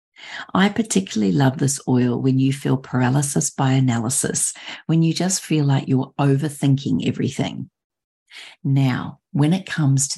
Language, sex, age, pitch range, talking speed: English, female, 40-59, 130-165 Hz, 140 wpm